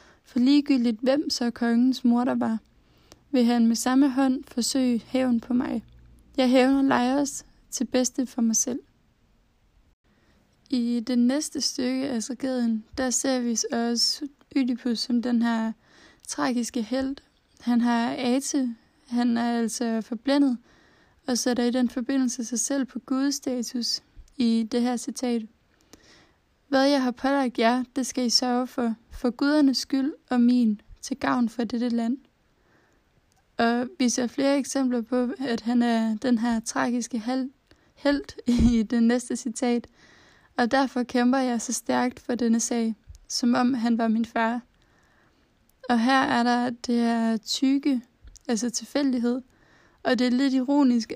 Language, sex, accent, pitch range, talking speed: Danish, female, native, 235-265 Hz, 155 wpm